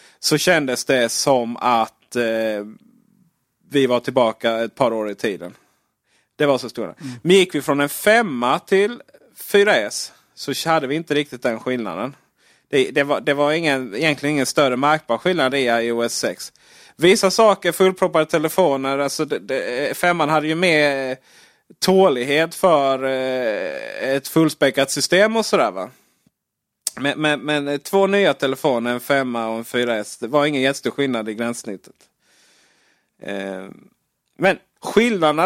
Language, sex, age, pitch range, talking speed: Swedish, male, 30-49, 125-175 Hz, 150 wpm